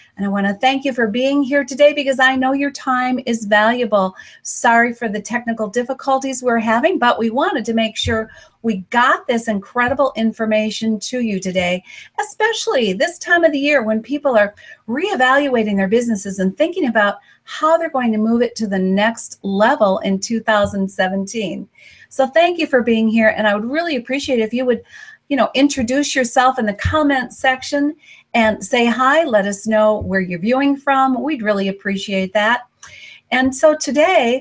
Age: 40-59